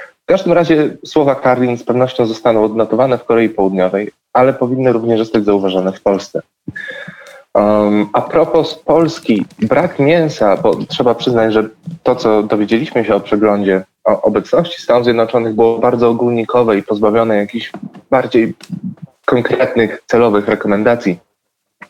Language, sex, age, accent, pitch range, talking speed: Polish, male, 20-39, native, 110-140 Hz, 130 wpm